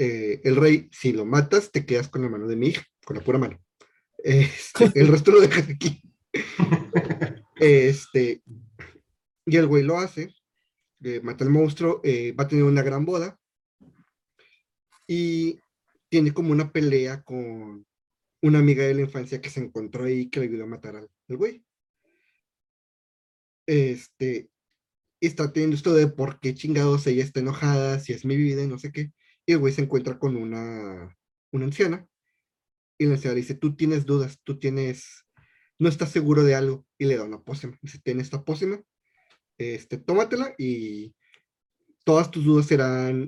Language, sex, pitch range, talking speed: Spanish, male, 130-155 Hz, 170 wpm